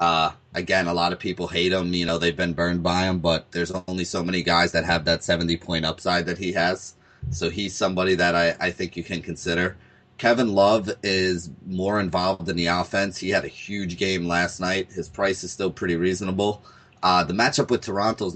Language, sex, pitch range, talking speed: English, male, 85-105 Hz, 220 wpm